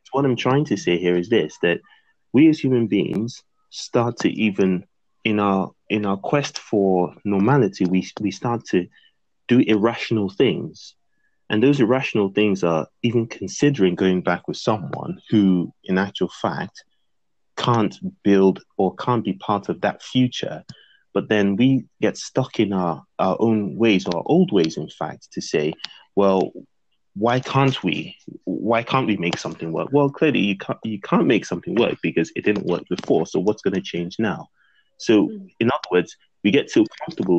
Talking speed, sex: 175 wpm, male